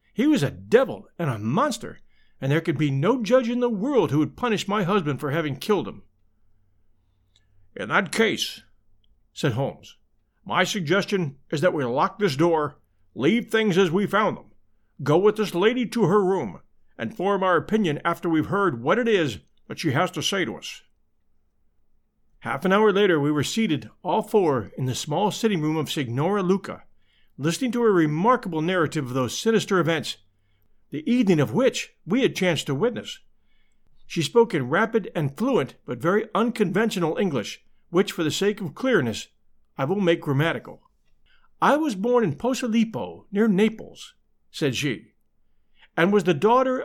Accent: American